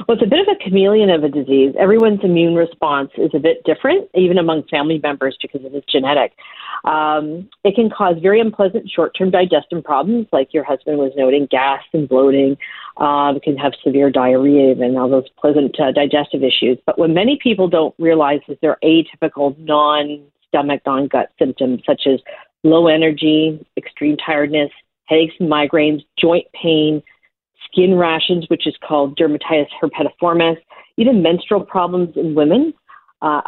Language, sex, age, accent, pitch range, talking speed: English, female, 40-59, American, 145-175 Hz, 165 wpm